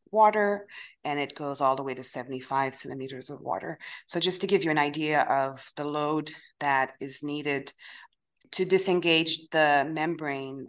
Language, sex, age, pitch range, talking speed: English, female, 30-49, 135-155 Hz, 165 wpm